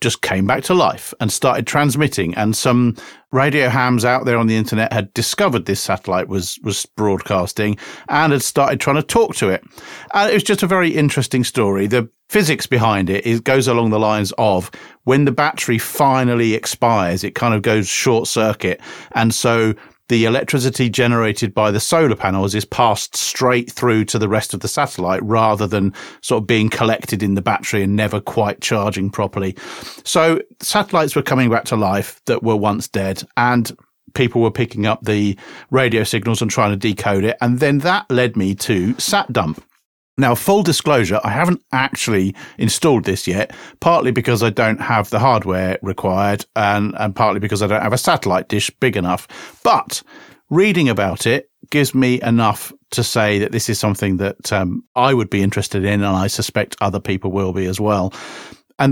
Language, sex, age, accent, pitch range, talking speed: English, male, 40-59, British, 105-130 Hz, 190 wpm